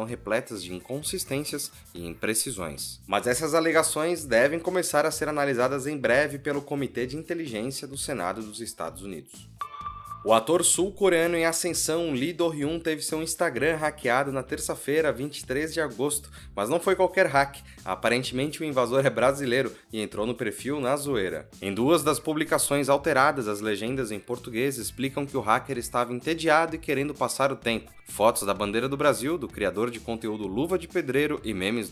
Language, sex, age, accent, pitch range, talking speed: Portuguese, male, 20-39, Brazilian, 115-155 Hz, 170 wpm